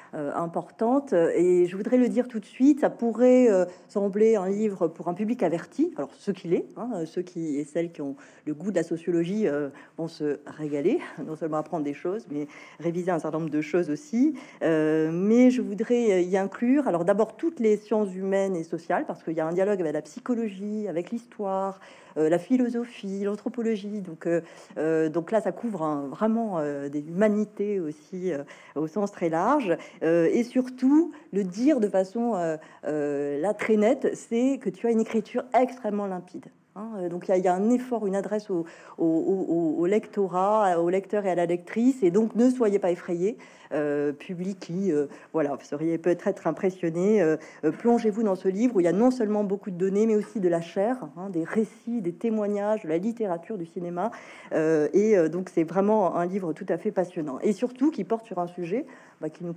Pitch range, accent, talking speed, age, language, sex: 170-225 Hz, French, 210 wpm, 40-59, French, female